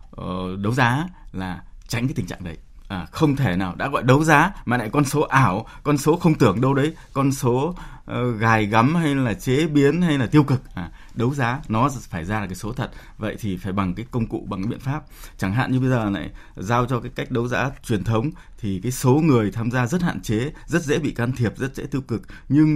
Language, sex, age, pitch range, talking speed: Vietnamese, male, 20-39, 105-140 Hz, 250 wpm